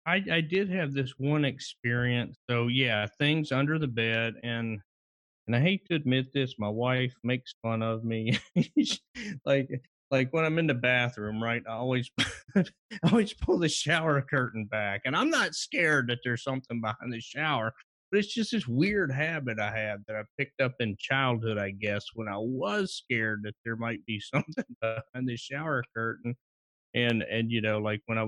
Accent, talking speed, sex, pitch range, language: American, 190 wpm, male, 105-135 Hz, English